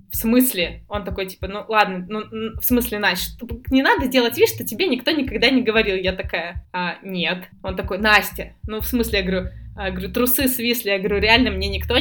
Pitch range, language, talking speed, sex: 200-250 Hz, Russian, 210 wpm, female